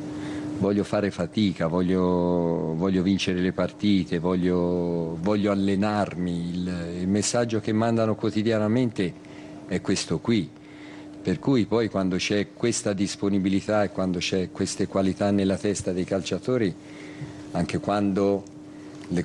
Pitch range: 90-105 Hz